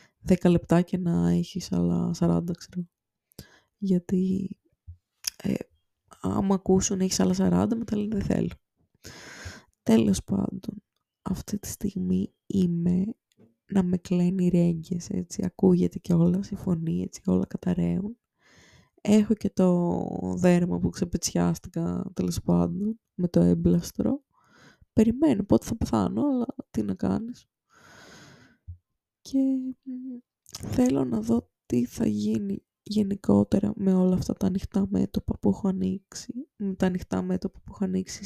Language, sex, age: Greek, female, 20-39